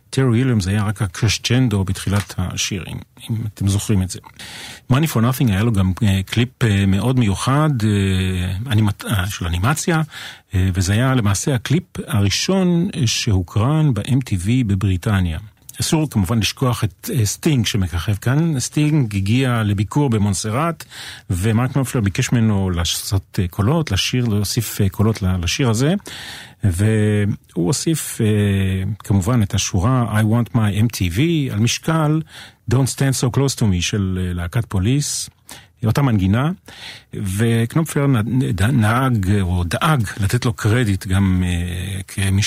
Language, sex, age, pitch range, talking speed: Hebrew, male, 40-59, 100-125 Hz, 125 wpm